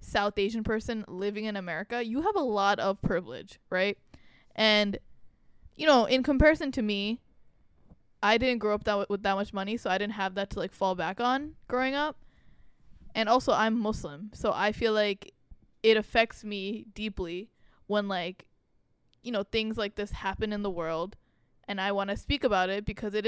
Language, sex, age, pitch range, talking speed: English, female, 10-29, 200-235 Hz, 190 wpm